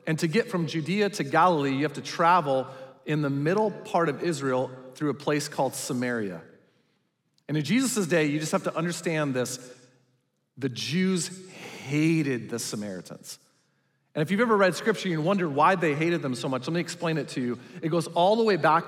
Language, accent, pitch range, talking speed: English, American, 140-185 Hz, 200 wpm